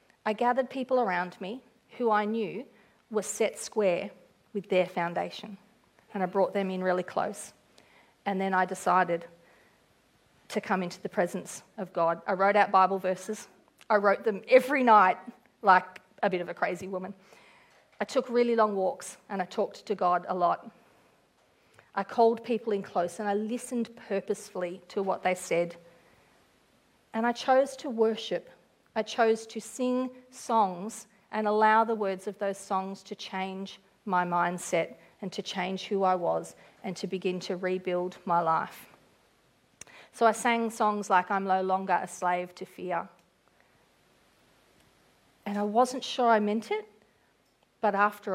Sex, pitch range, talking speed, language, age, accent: female, 185-220 Hz, 160 wpm, English, 40-59, Australian